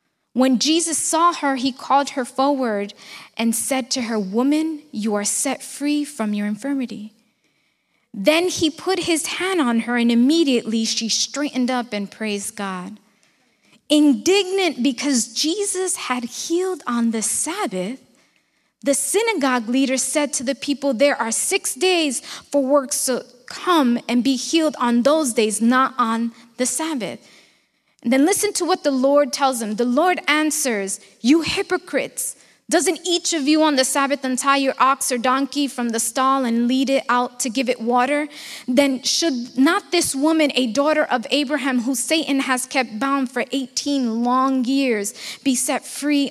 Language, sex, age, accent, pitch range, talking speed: Spanish, female, 20-39, American, 230-290 Hz, 165 wpm